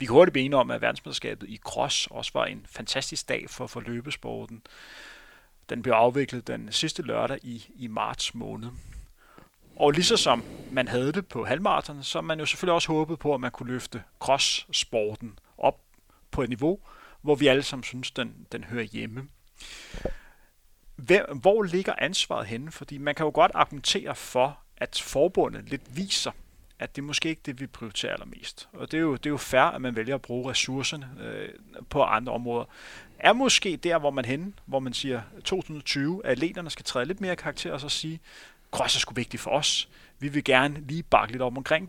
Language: Danish